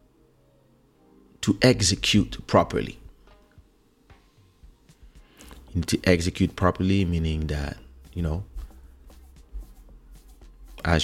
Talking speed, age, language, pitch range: 70 wpm, 30-49, English, 70-100 Hz